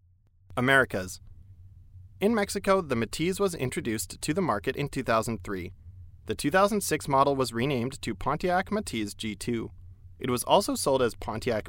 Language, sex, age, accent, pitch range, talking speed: English, male, 30-49, American, 95-155 Hz, 140 wpm